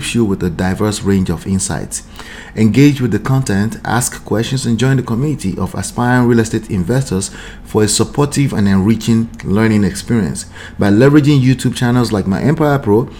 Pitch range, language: 95-125 Hz, English